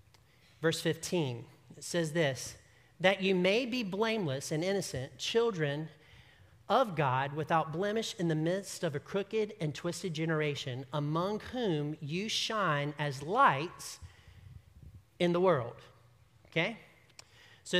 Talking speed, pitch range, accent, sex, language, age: 125 wpm, 145-195 Hz, American, male, English, 40-59